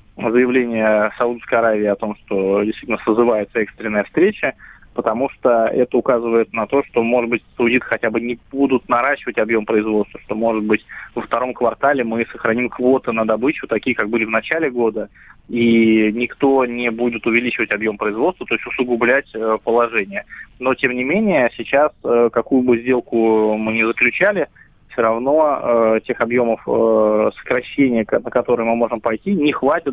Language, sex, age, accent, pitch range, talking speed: Russian, male, 20-39, native, 110-125 Hz, 160 wpm